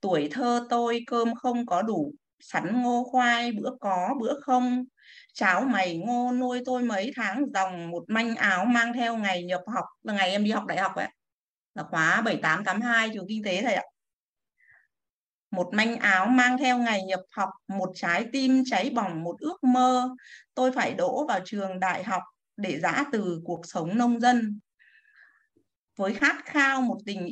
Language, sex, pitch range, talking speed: Vietnamese, female, 190-255 Hz, 185 wpm